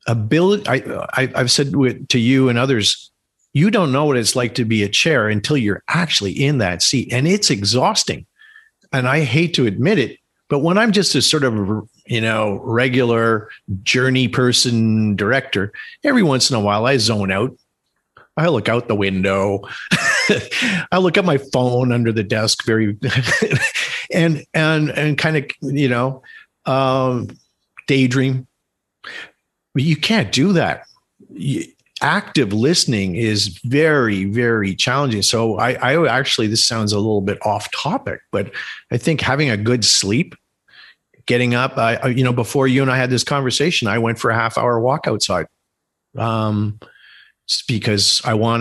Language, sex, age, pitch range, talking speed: English, male, 50-69, 110-145 Hz, 155 wpm